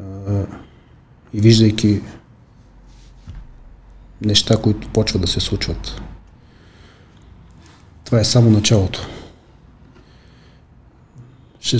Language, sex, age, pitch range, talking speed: Bulgarian, male, 40-59, 100-120 Hz, 65 wpm